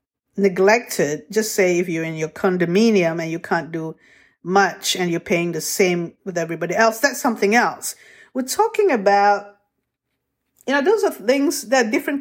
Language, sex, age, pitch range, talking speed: English, female, 50-69, 175-250 Hz, 165 wpm